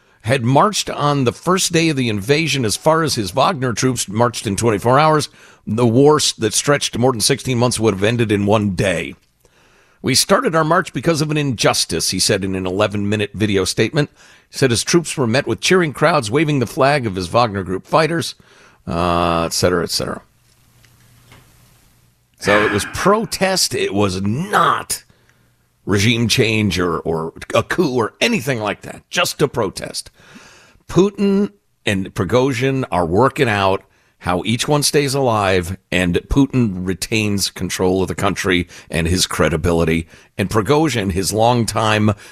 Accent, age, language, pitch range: American, 50-69, English, 95-135 Hz